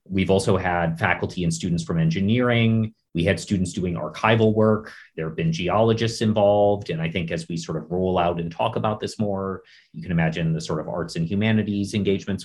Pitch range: 85-105 Hz